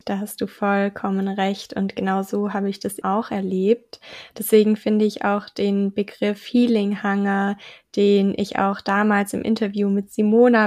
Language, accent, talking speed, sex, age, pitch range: German, German, 165 wpm, female, 20-39, 200-225 Hz